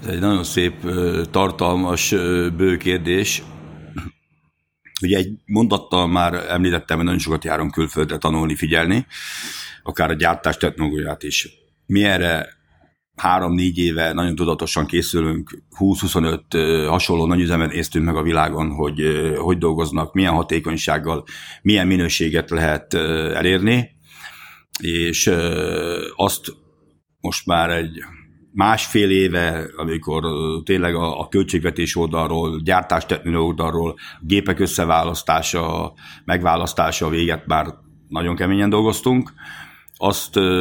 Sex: male